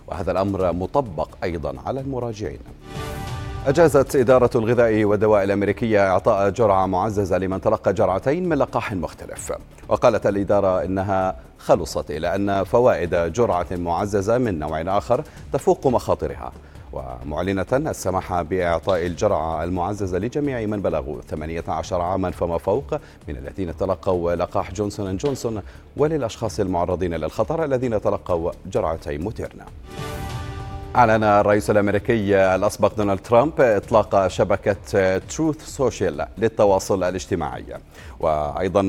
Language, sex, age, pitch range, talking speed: Arabic, male, 40-59, 90-115 Hz, 110 wpm